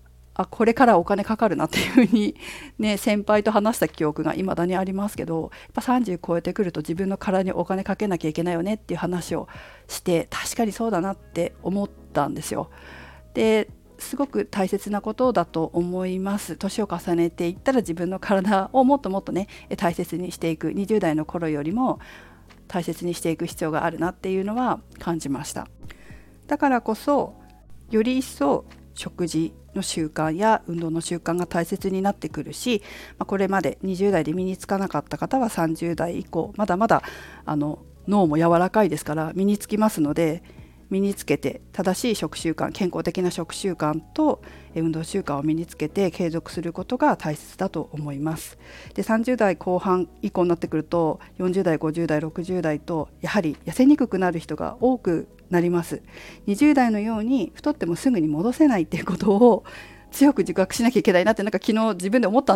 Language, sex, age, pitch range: Japanese, female, 50-69, 165-215 Hz